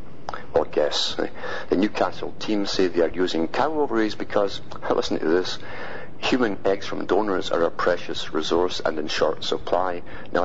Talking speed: 160 wpm